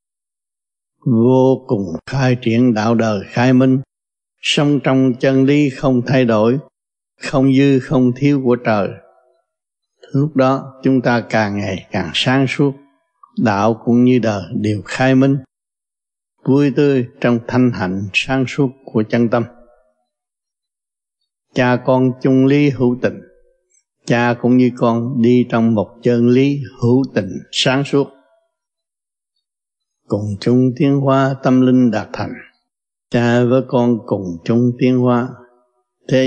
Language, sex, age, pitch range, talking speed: Vietnamese, male, 60-79, 115-135 Hz, 135 wpm